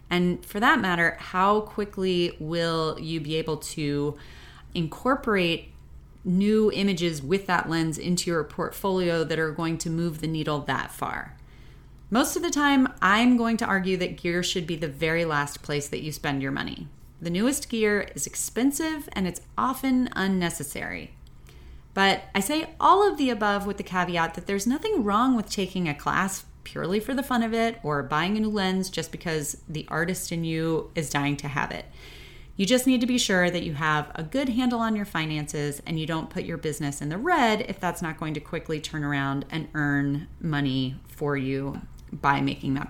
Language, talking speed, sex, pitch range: English, 195 wpm, female, 150-215 Hz